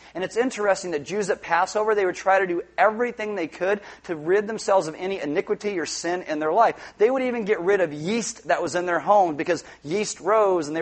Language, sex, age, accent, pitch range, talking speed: English, male, 30-49, American, 170-215 Hz, 240 wpm